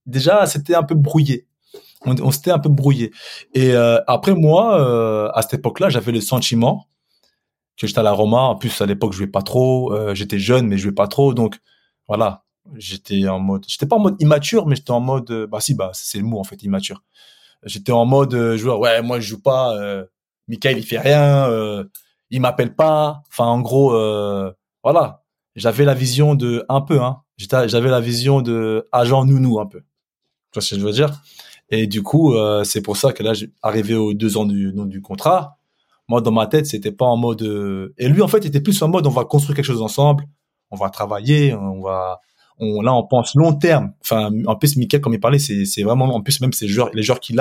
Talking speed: 230 wpm